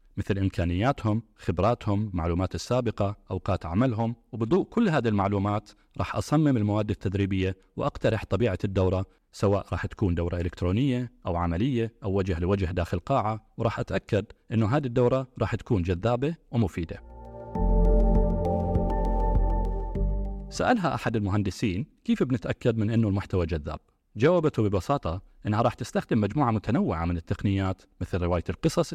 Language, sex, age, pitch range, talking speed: Arabic, male, 30-49, 95-120 Hz, 125 wpm